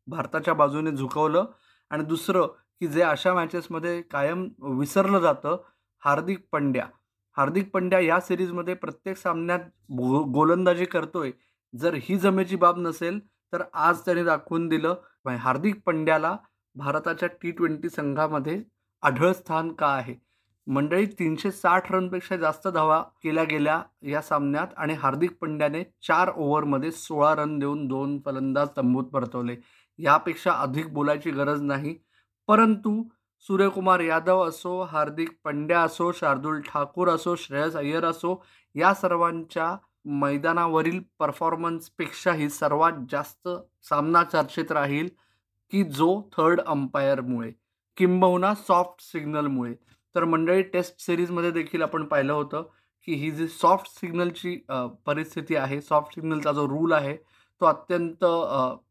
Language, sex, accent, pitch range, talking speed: Marathi, male, native, 145-175 Hz, 125 wpm